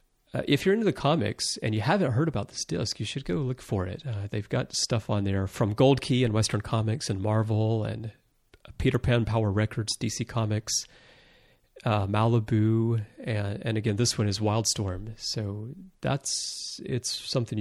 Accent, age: American, 30-49